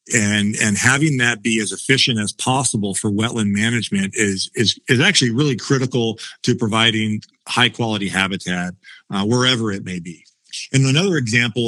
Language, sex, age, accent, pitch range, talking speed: English, male, 40-59, American, 105-130 Hz, 160 wpm